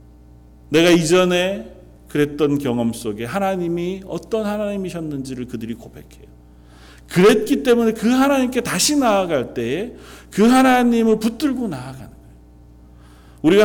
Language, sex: Korean, male